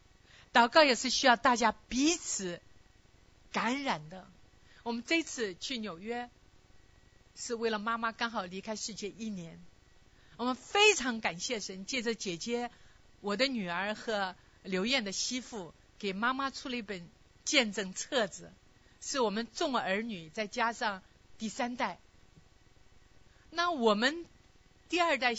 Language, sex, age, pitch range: Chinese, female, 50-69, 195-255 Hz